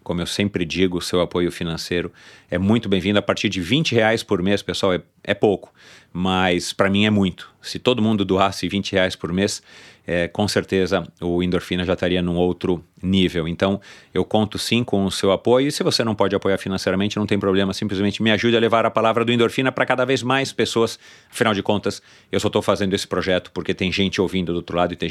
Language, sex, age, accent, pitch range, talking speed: Portuguese, male, 40-59, Brazilian, 95-115 Hz, 225 wpm